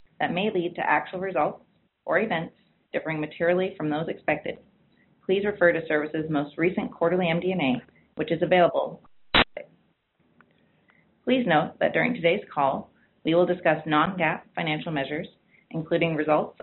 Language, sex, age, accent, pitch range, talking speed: English, female, 30-49, American, 155-185 Hz, 135 wpm